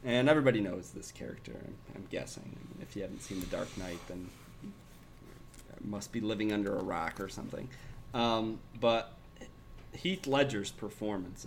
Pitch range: 100-125 Hz